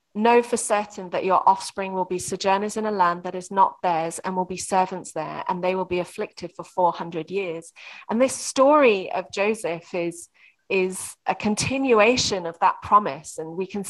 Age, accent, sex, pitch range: 30-49, British, female, 175-215 Hz